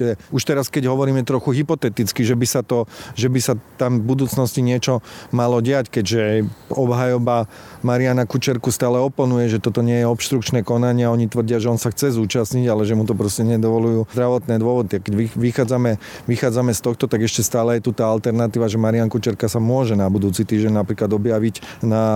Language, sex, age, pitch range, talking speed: Slovak, male, 30-49, 115-130 Hz, 185 wpm